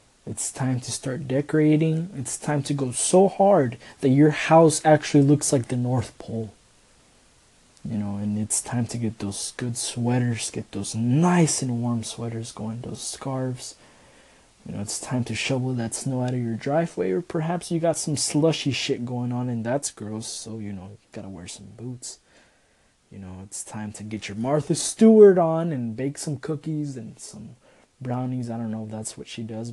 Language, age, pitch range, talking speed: English, 20-39, 110-145 Hz, 195 wpm